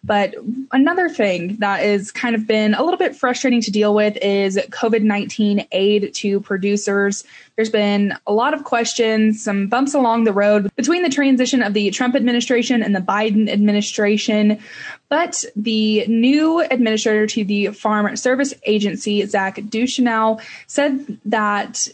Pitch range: 210-250 Hz